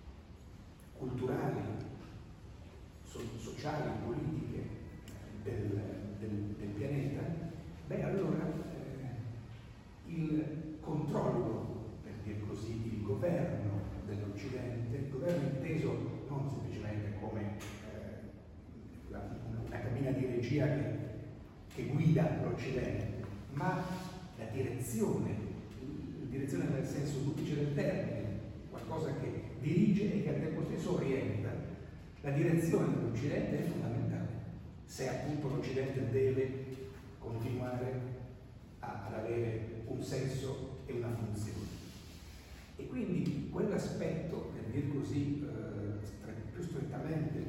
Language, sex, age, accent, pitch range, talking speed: Italian, male, 40-59, native, 105-140 Hz, 100 wpm